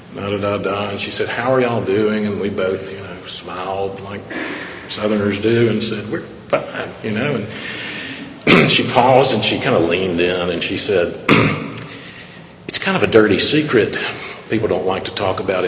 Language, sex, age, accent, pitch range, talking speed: English, male, 50-69, American, 105-160 Hz, 180 wpm